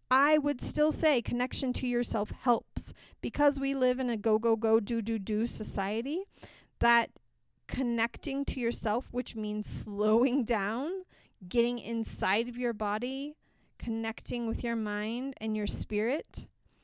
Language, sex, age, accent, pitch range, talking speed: English, female, 30-49, American, 205-265 Hz, 145 wpm